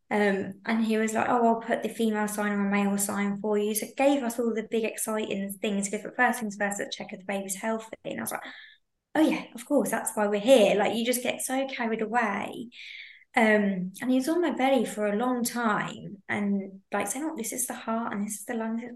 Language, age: English, 20-39